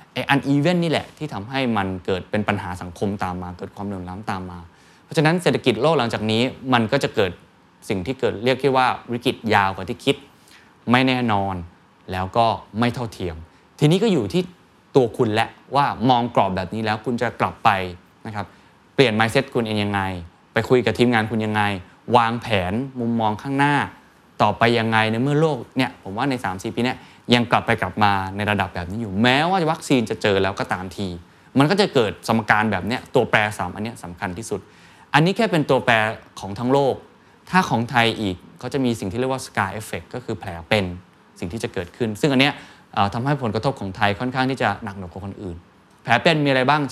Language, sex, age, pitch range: Thai, male, 20-39, 95-130 Hz